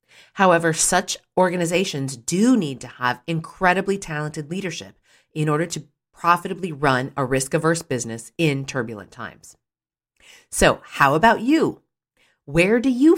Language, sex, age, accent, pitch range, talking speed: English, female, 40-59, American, 145-220 Hz, 125 wpm